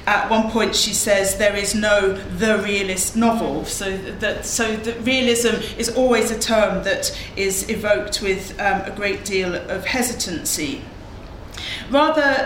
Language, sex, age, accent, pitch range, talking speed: English, female, 40-59, British, 195-240 Hz, 150 wpm